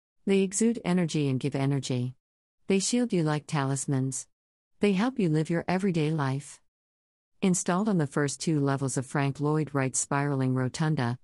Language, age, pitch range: English, 50-69, 130-170 Hz